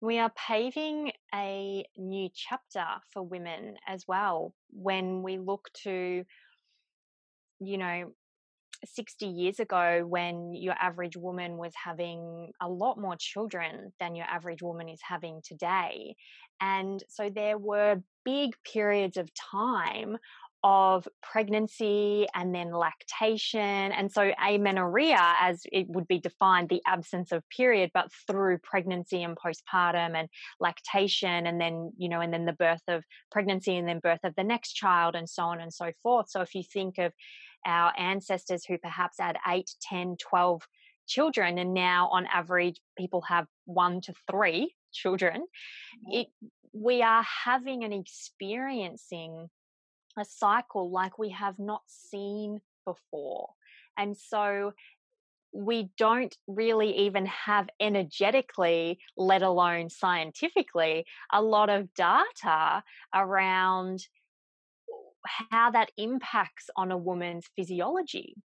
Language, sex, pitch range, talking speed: English, female, 180-215 Hz, 135 wpm